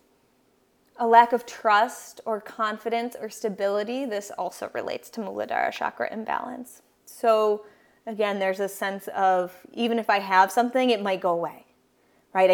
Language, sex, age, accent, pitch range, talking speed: English, female, 20-39, American, 200-235 Hz, 150 wpm